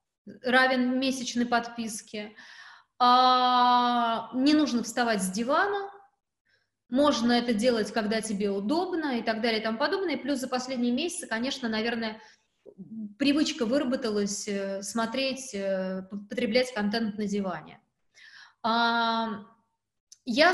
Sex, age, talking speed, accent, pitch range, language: female, 20-39, 100 wpm, native, 215-265 Hz, Russian